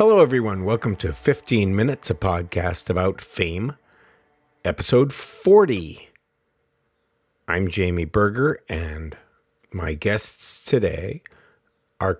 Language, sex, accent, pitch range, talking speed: English, male, American, 85-115 Hz, 100 wpm